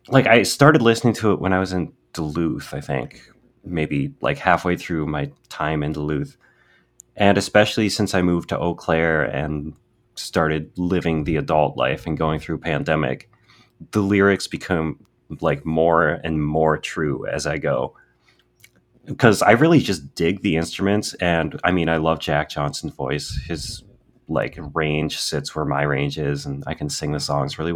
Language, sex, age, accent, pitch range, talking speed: English, male, 30-49, American, 75-100 Hz, 175 wpm